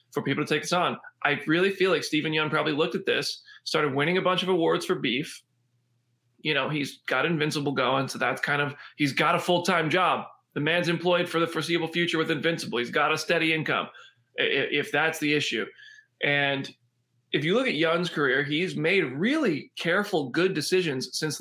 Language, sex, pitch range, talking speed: English, male, 140-175 Hz, 200 wpm